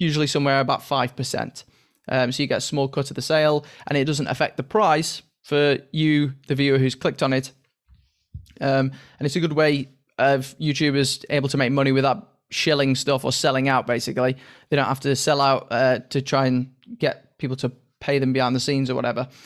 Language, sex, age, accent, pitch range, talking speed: English, male, 20-39, British, 135-155 Hz, 205 wpm